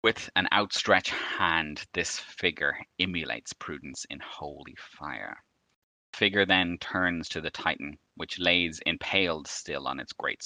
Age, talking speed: 30-49, 145 wpm